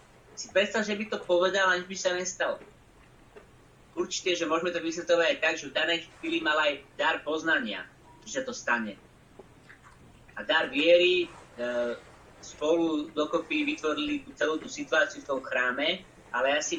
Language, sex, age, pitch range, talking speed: Slovak, male, 30-49, 160-185 Hz, 150 wpm